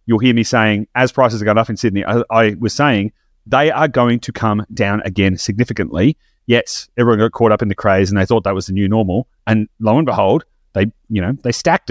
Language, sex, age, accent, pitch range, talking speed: English, male, 30-49, Australian, 105-130 Hz, 240 wpm